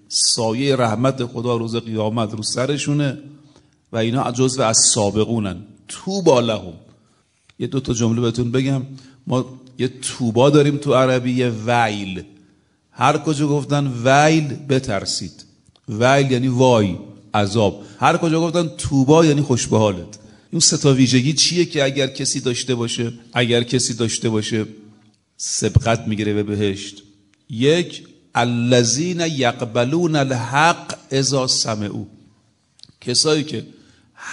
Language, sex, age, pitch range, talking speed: Persian, male, 40-59, 110-150 Hz, 120 wpm